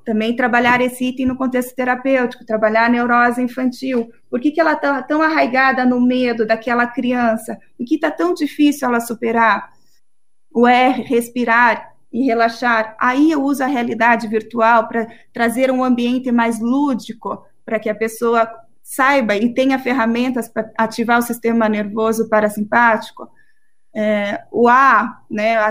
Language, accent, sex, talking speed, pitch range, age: Portuguese, Brazilian, female, 145 wpm, 230-260 Hz, 20-39